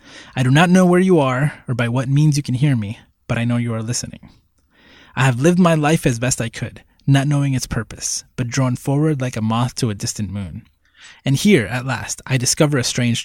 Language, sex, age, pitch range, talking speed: English, male, 20-39, 110-145 Hz, 235 wpm